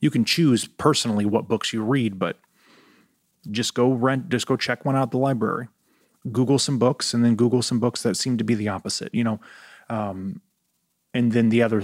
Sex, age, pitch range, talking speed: male, 30-49, 105-125 Hz, 210 wpm